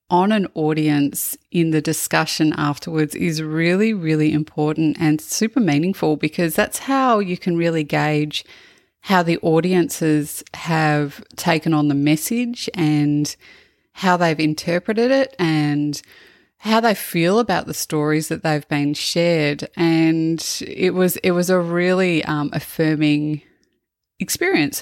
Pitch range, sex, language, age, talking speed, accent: 150-185 Hz, female, English, 20-39, 135 wpm, Australian